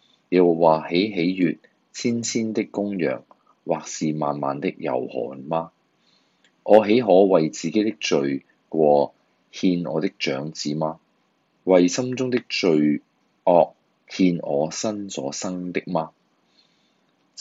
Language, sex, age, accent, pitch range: Chinese, male, 30-49, native, 75-100 Hz